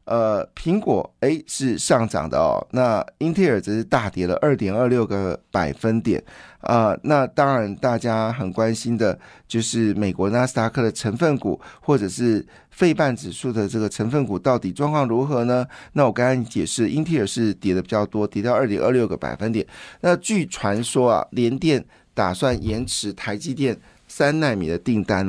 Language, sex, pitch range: Chinese, male, 105-140 Hz